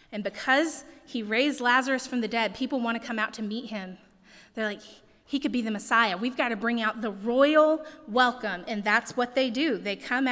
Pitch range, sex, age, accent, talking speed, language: 210-270 Hz, female, 30-49, American, 220 wpm, English